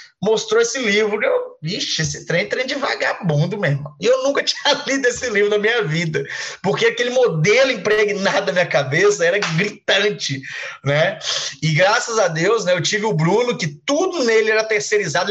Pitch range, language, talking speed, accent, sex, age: 180-280 Hz, Portuguese, 175 wpm, Brazilian, male, 20-39